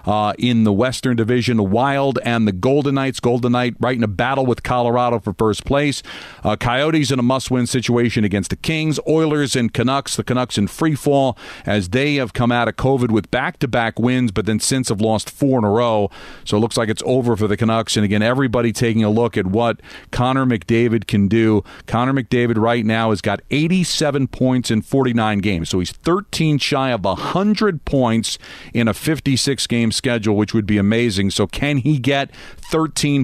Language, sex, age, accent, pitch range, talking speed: English, male, 40-59, American, 110-135 Hz, 205 wpm